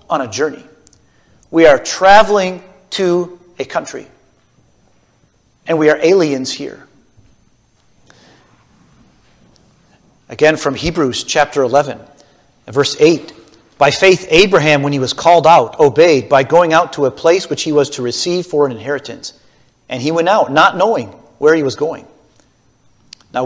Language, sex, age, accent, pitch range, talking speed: English, male, 40-59, American, 140-180 Hz, 140 wpm